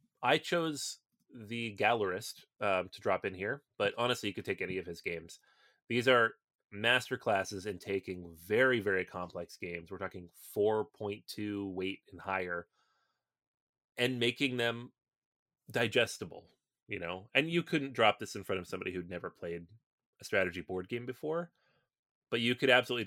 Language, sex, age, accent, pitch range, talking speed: English, male, 30-49, American, 95-125 Hz, 155 wpm